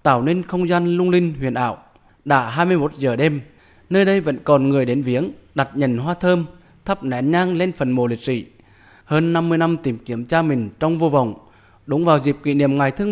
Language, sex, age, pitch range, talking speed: Vietnamese, male, 20-39, 130-170 Hz, 225 wpm